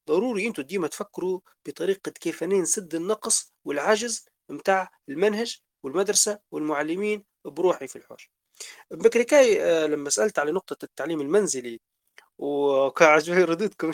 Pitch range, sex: 165-240 Hz, male